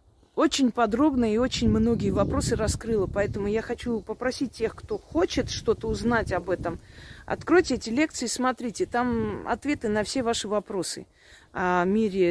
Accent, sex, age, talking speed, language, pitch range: native, female, 40-59, 145 wpm, Russian, 175-240 Hz